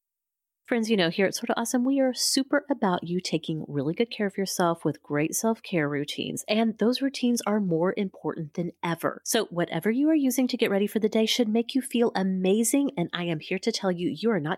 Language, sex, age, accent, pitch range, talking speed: English, female, 30-49, American, 155-225 Hz, 230 wpm